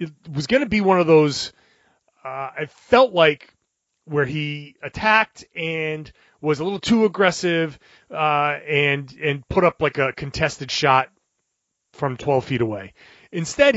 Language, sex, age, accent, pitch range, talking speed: English, male, 30-49, American, 140-180 Hz, 155 wpm